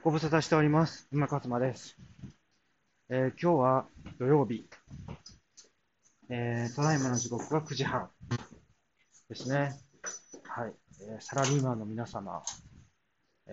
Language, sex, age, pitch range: Japanese, male, 40-59, 110-155 Hz